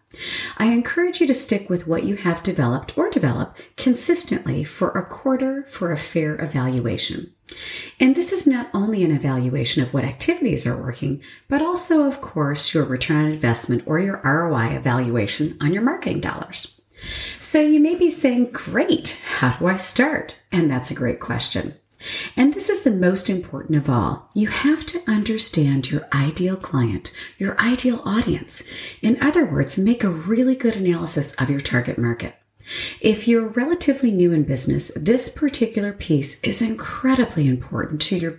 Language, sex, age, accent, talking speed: English, female, 40-59, American, 165 wpm